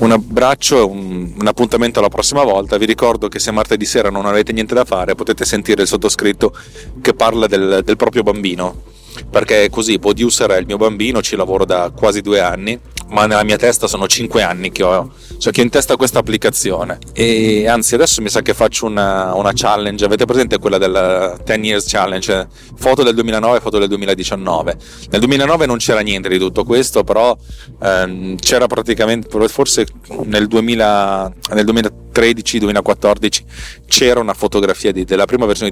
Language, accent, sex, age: Italian, native, male, 30-49